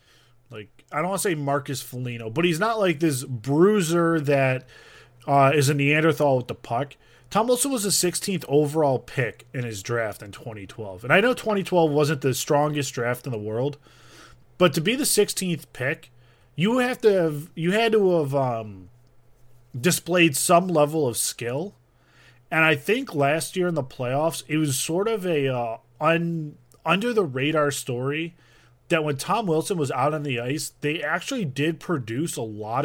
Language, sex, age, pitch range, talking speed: English, male, 20-39, 125-170 Hz, 180 wpm